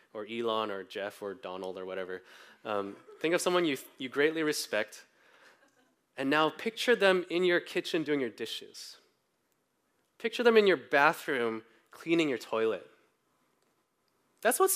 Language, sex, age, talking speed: English, male, 20-39, 150 wpm